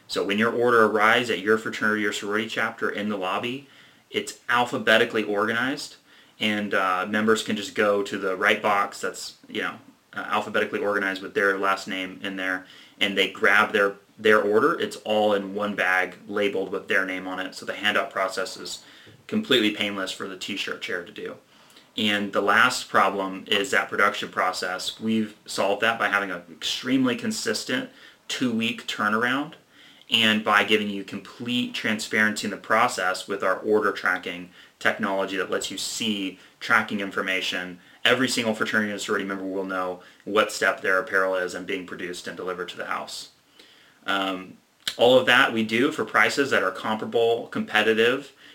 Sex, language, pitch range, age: male, English, 95-110 Hz, 30-49